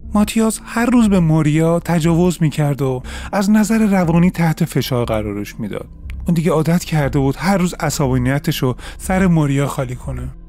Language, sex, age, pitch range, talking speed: Persian, male, 30-49, 135-180 Hz, 155 wpm